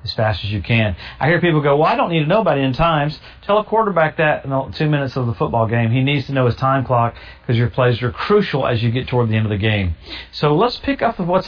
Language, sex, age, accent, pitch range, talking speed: English, male, 40-59, American, 115-140 Hz, 300 wpm